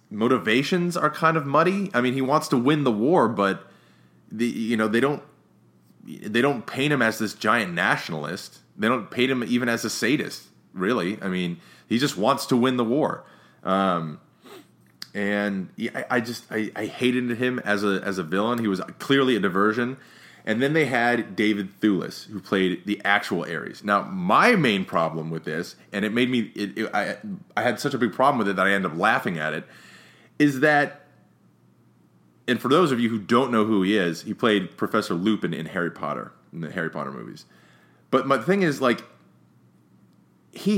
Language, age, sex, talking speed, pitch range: English, 30-49, male, 195 wpm, 105-165 Hz